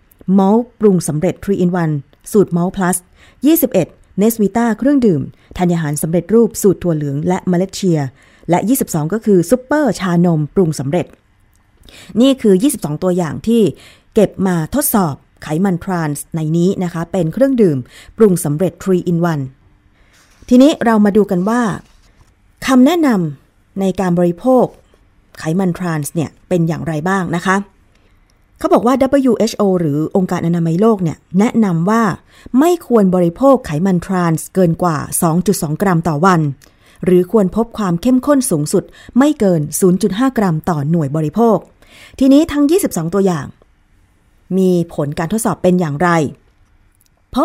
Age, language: 20-39, Thai